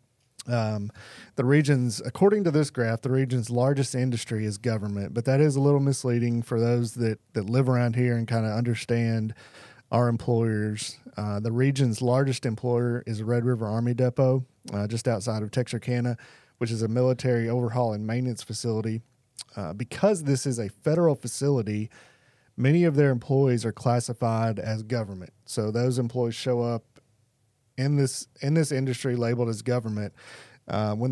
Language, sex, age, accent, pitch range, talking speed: English, male, 30-49, American, 110-130 Hz, 165 wpm